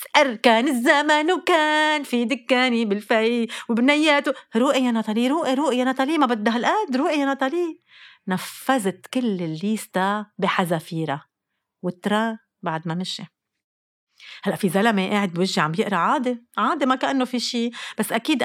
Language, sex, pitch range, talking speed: Arabic, female, 190-275 Hz, 145 wpm